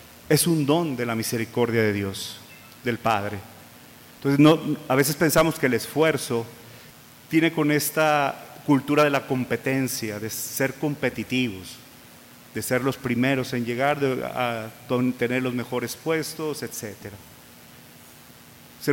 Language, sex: Spanish, male